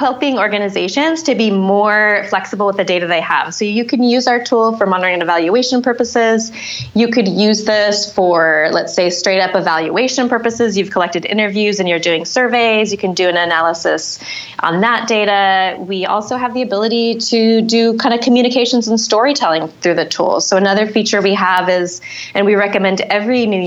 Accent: American